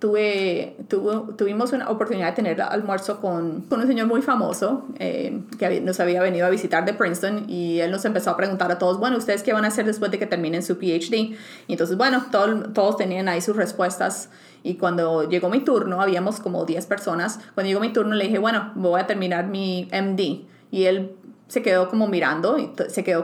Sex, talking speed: female, 215 wpm